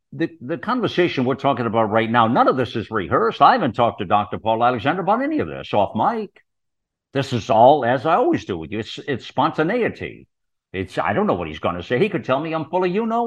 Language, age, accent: English, 60-79, American